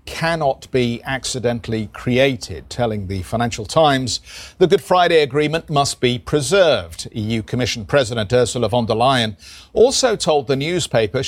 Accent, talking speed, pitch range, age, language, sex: British, 140 wpm, 110-150 Hz, 50-69, English, male